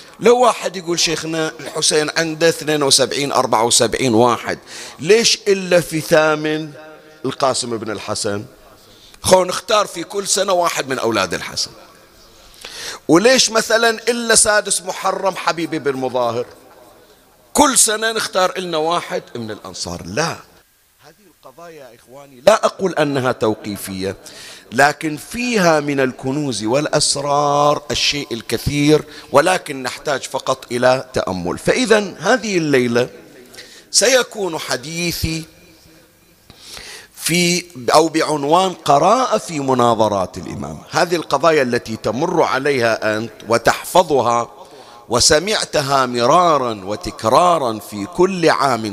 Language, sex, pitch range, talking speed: Arabic, male, 120-175 Hz, 105 wpm